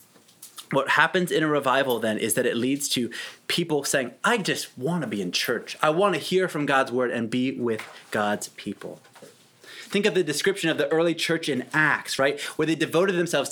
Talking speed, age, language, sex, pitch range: 210 wpm, 30-49, English, male, 135-175 Hz